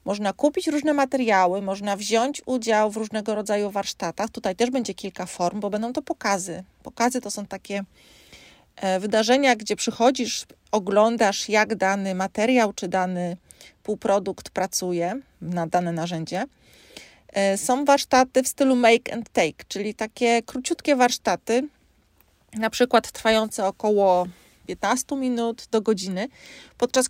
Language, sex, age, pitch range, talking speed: Polish, female, 30-49, 200-260 Hz, 130 wpm